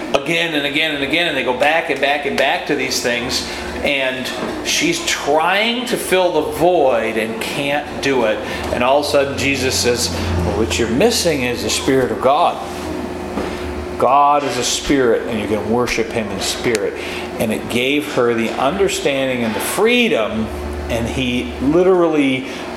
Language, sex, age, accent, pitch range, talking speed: English, male, 40-59, American, 125-200 Hz, 175 wpm